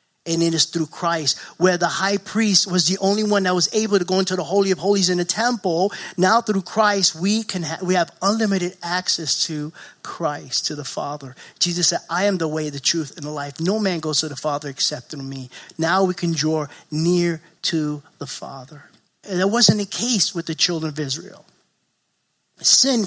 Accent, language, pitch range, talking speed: American, English, 155-195 Hz, 210 wpm